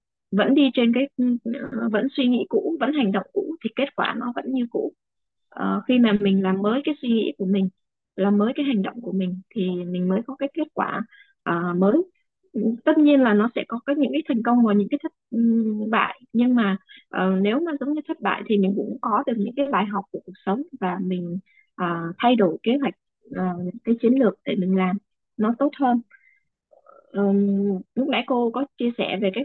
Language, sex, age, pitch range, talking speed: Vietnamese, female, 20-39, 195-270 Hz, 210 wpm